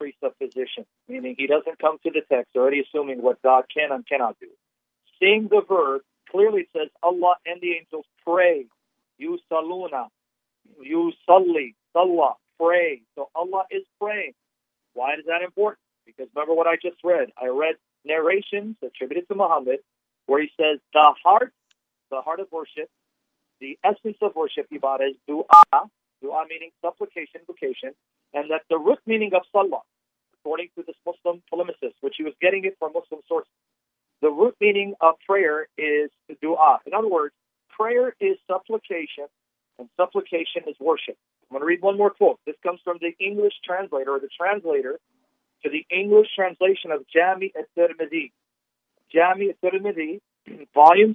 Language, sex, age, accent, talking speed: English, male, 40-59, American, 160 wpm